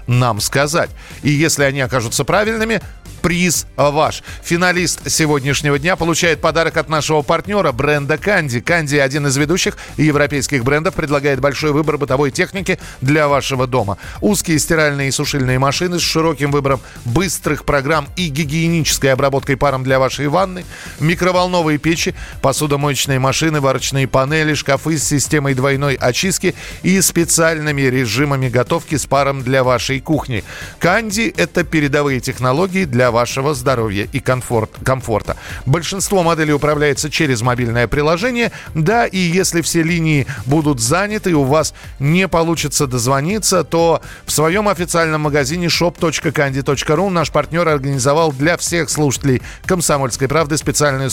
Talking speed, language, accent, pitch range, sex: 135 wpm, Russian, native, 135-170 Hz, male